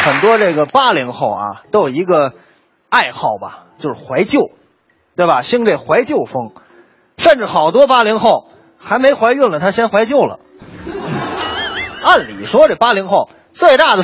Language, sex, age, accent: Chinese, male, 20-39, native